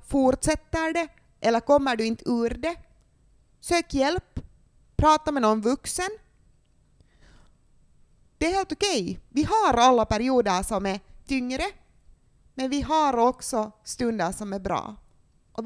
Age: 30-49